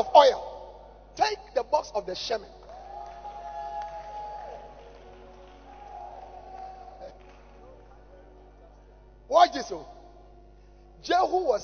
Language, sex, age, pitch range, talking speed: English, male, 50-69, 260-385 Hz, 65 wpm